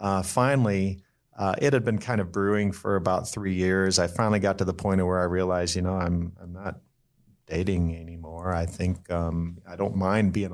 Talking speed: 210 wpm